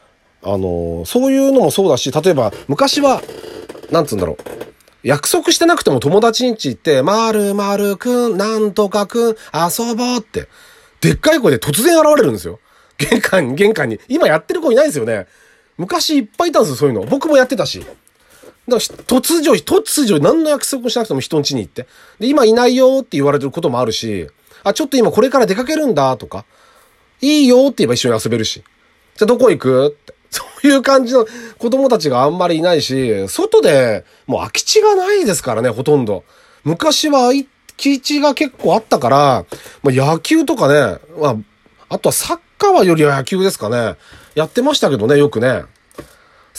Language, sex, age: Japanese, male, 40-59